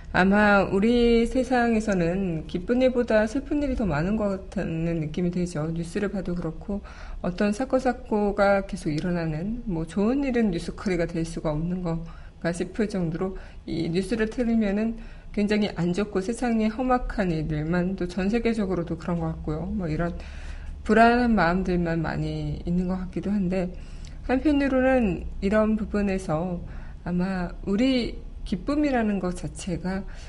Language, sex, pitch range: Korean, female, 175-215 Hz